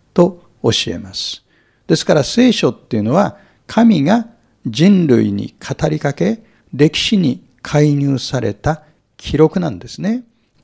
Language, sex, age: Japanese, male, 60-79